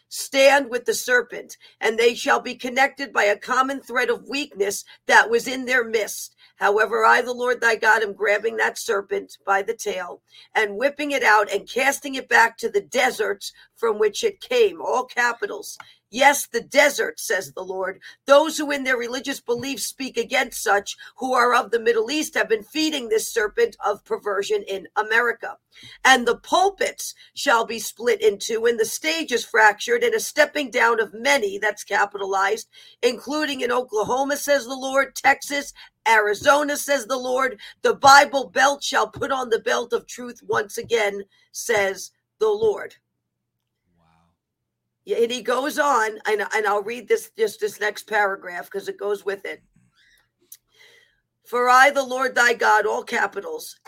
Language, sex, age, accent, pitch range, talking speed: English, female, 50-69, American, 215-305 Hz, 170 wpm